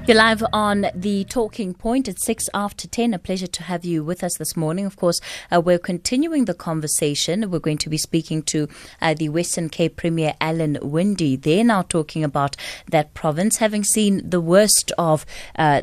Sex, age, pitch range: female, 20-39, 150-180 Hz